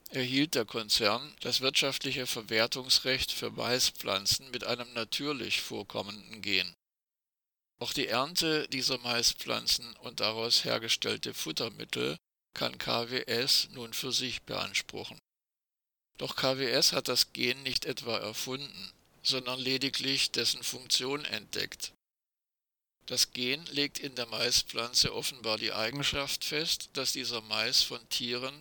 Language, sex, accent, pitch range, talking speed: German, male, German, 115-135 Hz, 115 wpm